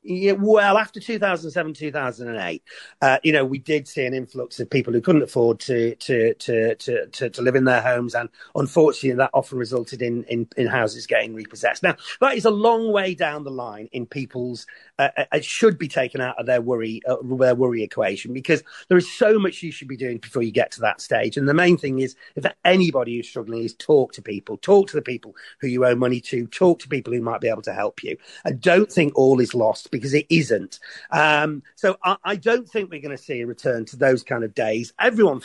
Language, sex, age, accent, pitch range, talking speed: English, male, 40-59, British, 120-185 Hz, 230 wpm